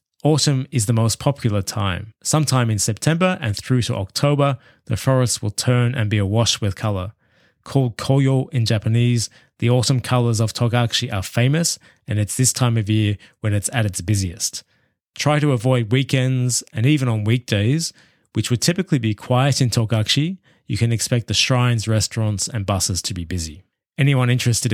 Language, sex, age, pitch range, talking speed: English, male, 20-39, 105-130 Hz, 175 wpm